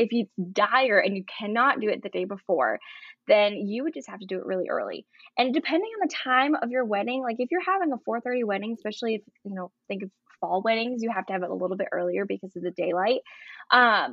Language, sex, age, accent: English, female, 10-29, American